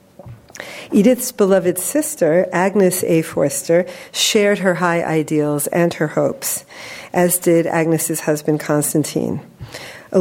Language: English